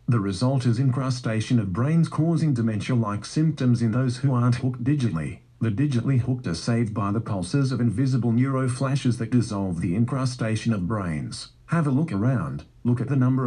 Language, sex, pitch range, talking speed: English, male, 115-130 Hz, 185 wpm